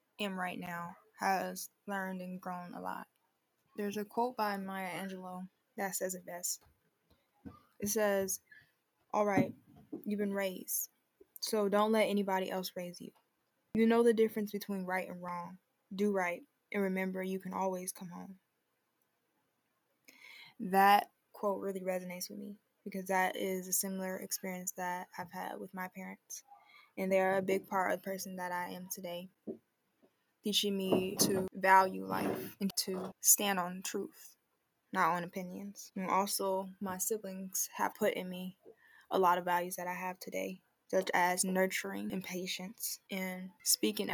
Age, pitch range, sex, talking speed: 10-29, 185-205 Hz, female, 160 wpm